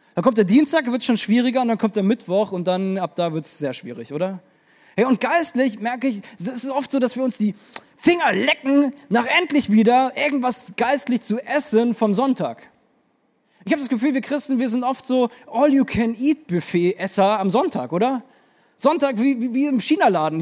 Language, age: German, 20-39